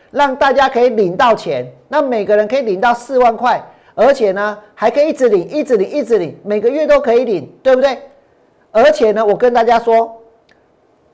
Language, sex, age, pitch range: Chinese, male, 50-69, 220-280 Hz